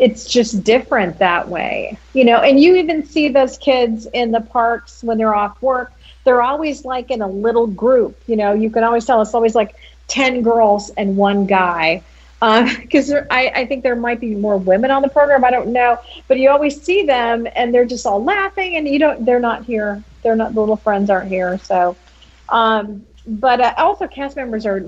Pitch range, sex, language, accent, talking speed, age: 200-255 Hz, female, English, American, 210 wpm, 40-59